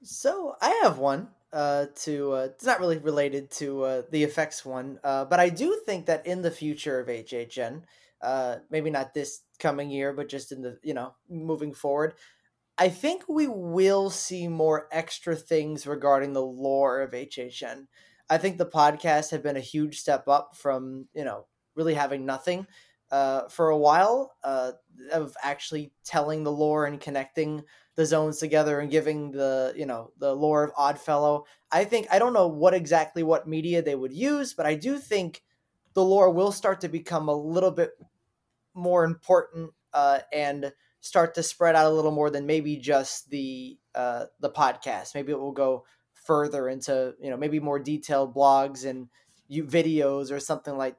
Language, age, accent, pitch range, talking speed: English, 20-39, American, 140-165 Hz, 180 wpm